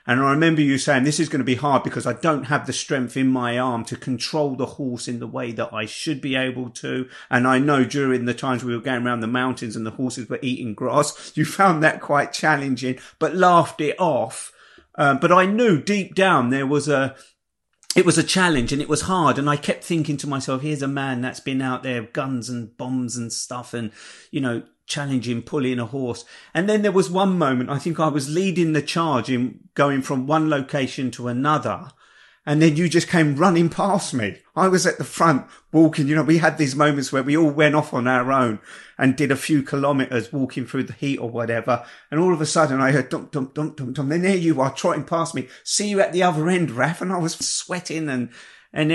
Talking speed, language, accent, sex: 235 wpm, English, British, male